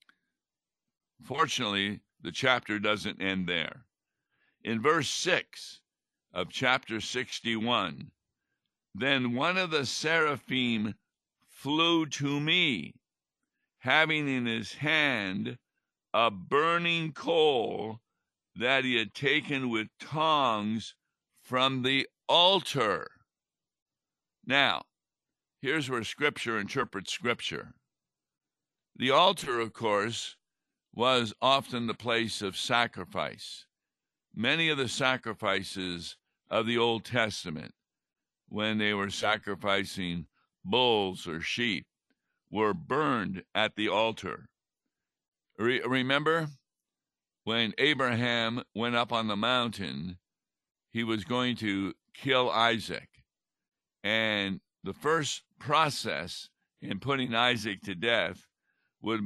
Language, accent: English, American